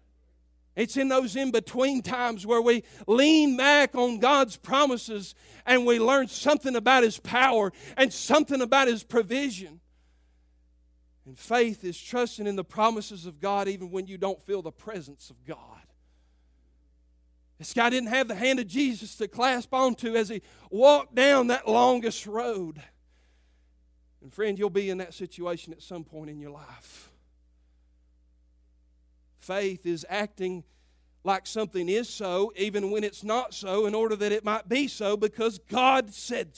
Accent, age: American, 40-59